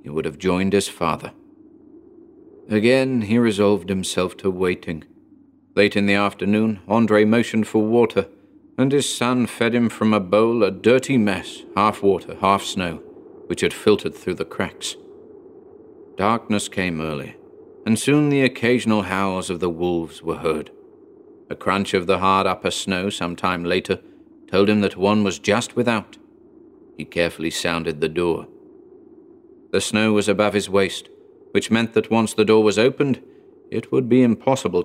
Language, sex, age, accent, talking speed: English, male, 40-59, British, 160 wpm